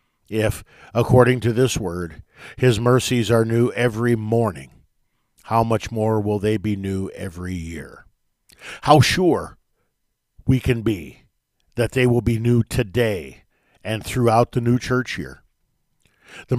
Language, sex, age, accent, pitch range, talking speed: English, male, 50-69, American, 105-125 Hz, 140 wpm